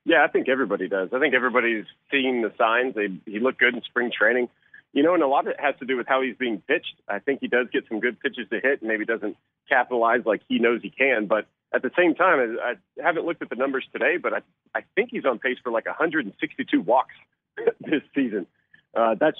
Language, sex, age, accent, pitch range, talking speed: English, male, 40-59, American, 115-155 Hz, 245 wpm